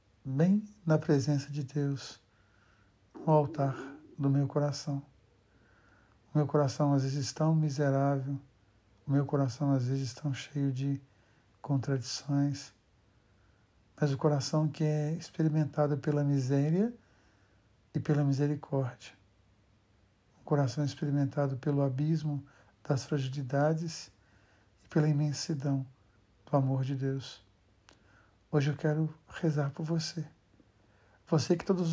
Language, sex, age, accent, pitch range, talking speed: Portuguese, male, 60-79, Brazilian, 110-150 Hz, 120 wpm